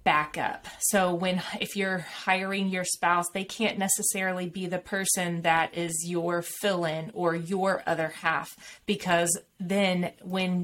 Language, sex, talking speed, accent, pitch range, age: English, female, 145 wpm, American, 170-200 Hz, 30-49